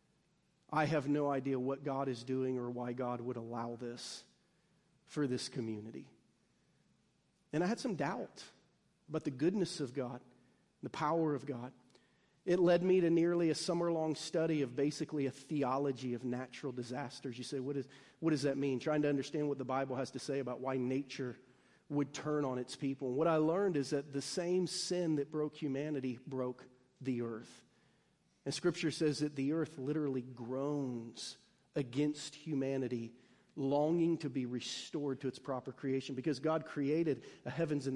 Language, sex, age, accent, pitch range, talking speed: English, male, 40-59, American, 130-160 Hz, 170 wpm